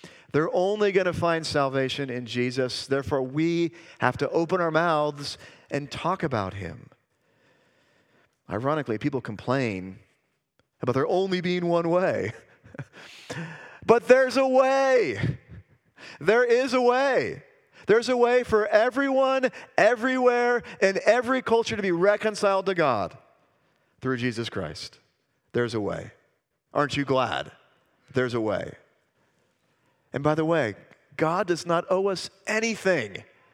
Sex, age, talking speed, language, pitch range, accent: male, 40-59, 130 wpm, English, 125-190 Hz, American